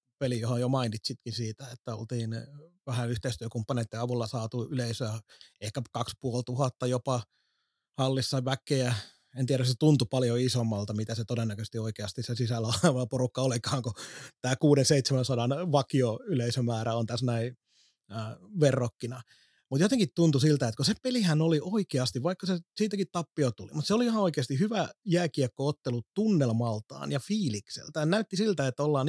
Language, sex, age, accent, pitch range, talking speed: Finnish, male, 30-49, native, 120-150 Hz, 145 wpm